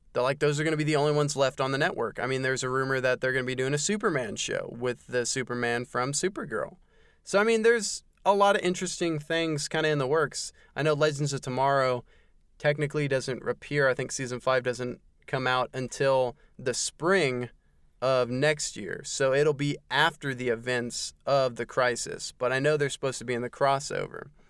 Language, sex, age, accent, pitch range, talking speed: English, male, 20-39, American, 125-155 Hz, 210 wpm